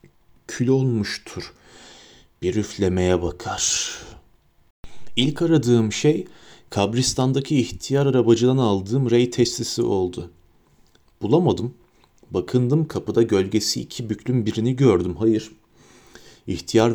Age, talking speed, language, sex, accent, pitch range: 40-59, 90 wpm, Turkish, male, native, 105-125 Hz